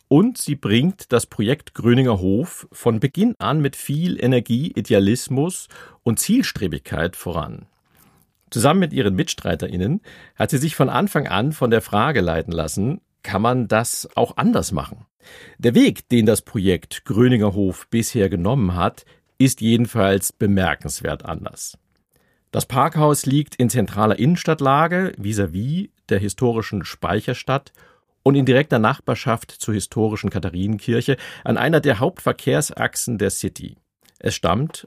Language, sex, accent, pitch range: German, male, German, 100-140 Hz